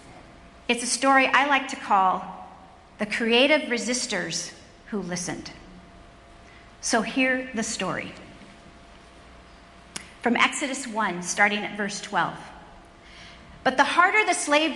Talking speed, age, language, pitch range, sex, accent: 115 wpm, 40-59, English, 225-280 Hz, female, American